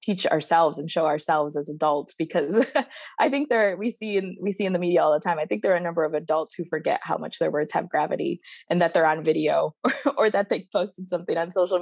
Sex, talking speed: female, 260 wpm